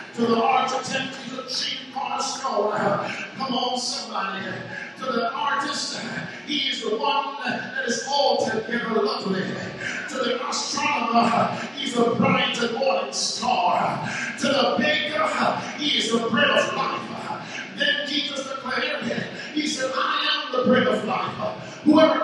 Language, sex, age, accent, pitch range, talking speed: English, male, 40-59, American, 225-280 Hz, 140 wpm